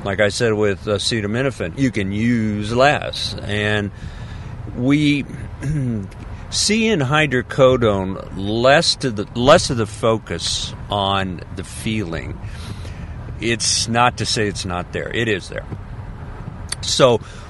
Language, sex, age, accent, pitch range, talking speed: English, male, 50-69, American, 95-120 Hz, 115 wpm